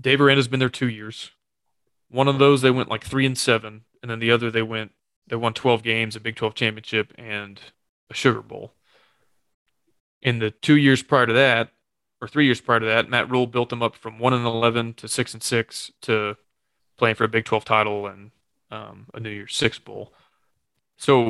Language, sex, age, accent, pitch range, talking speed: English, male, 20-39, American, 110-125 Hz, 210 wpm